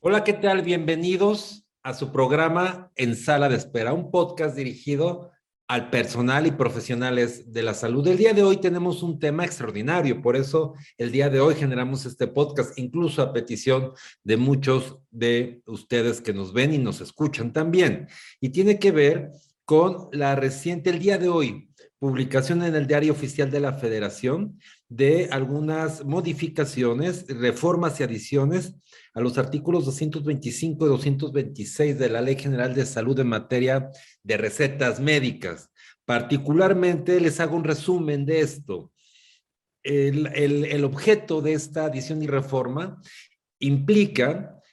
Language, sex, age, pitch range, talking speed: Spanish, male, 40-59, 130-165 Hz, 150 wpm